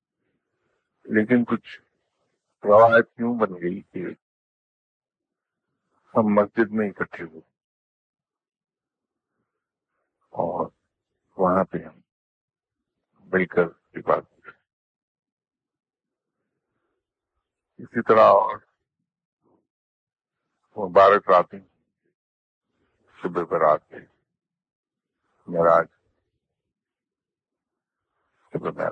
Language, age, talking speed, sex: English, 60-79, 35 wpm, male